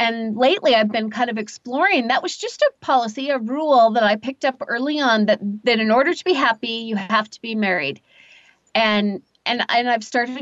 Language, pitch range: English, 220-275 Hz